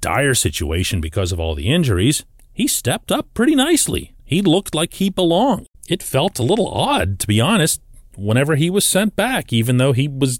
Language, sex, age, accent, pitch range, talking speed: English, male, 40-59, American, 95-145 Hz, 190 wpm